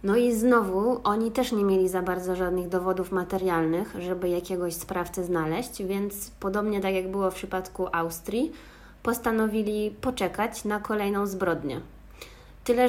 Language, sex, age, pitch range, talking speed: Polish, female, 20-39, 185-220 Hz, 140 wpm